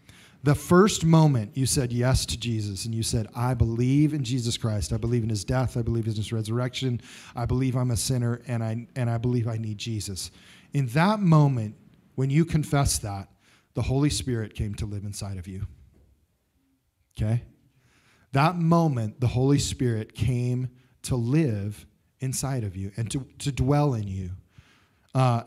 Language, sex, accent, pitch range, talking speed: English, male, American, 110-140 Hz, 175 wpm